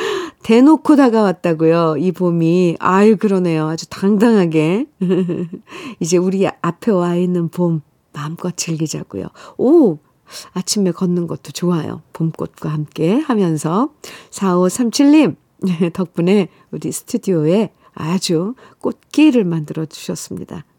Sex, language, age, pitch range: female, Korean, 50-69, 165-235 Hz